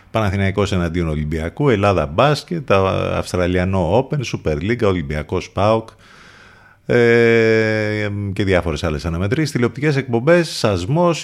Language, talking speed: Greek, 100 wpm